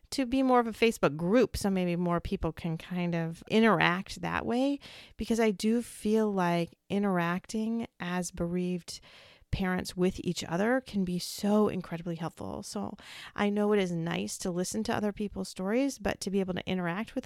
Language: English